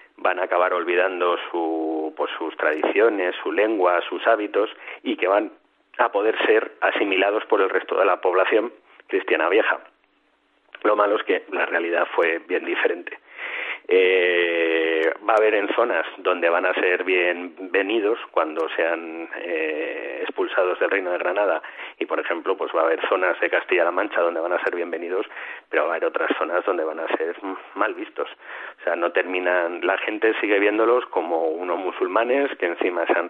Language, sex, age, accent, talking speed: Spanish, male, 40-59, Spanish, 170 wpm